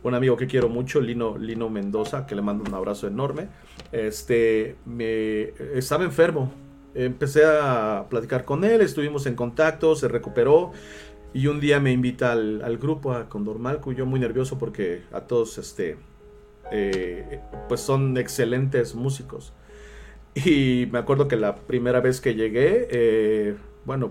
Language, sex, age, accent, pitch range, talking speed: Spanish, male, 40-59, Mexican, 110-145 Hz, 155 wpm